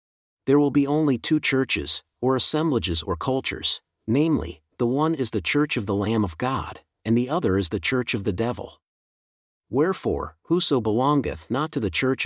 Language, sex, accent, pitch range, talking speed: English, male, American, 100-130 Hz, 180 wpm